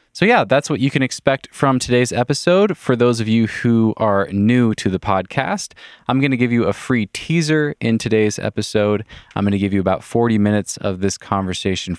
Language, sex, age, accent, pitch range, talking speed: English, male, 20-39, American, 95-120 Hz, 210 wpm